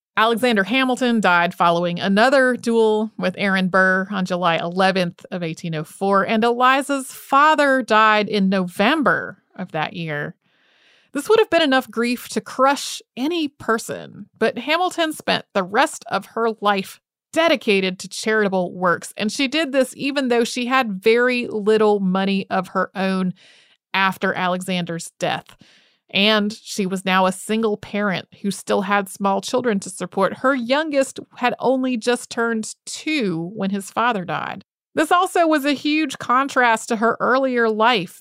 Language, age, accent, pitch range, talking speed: English, 30-49, American, 195-255 Hz, 150 wpm